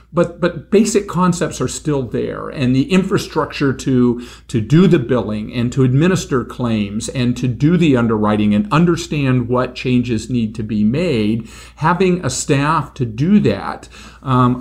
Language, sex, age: English, male, 50-69